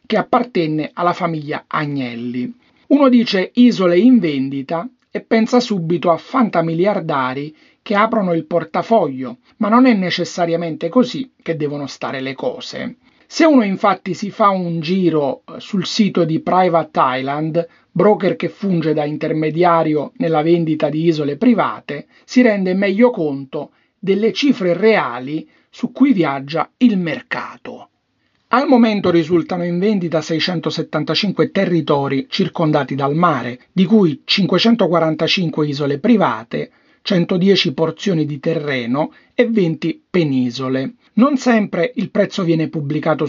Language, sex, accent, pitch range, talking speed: Italian, male, native, 150-210 Hz, 125 wpm